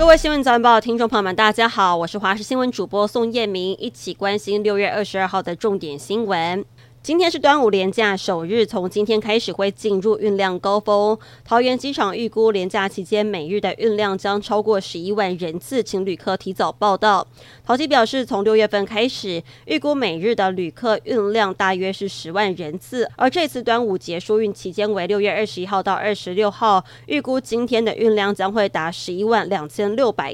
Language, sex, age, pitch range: Chinese, female, 20-39, 190-225 Hz